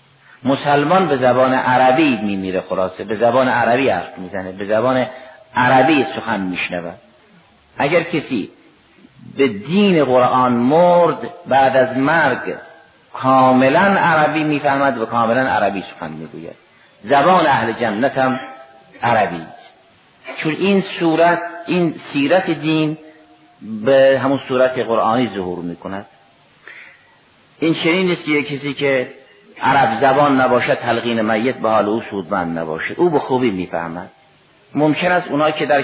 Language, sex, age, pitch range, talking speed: Persian, male, 50-69, 115-150 Hz, 135 wpm